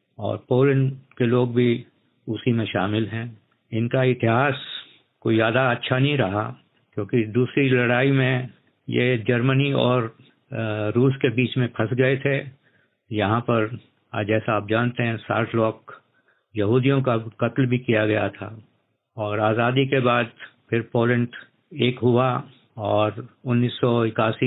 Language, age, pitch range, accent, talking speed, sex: Hindi, 50-69, 115-130 Hz, native, 135 wpm, male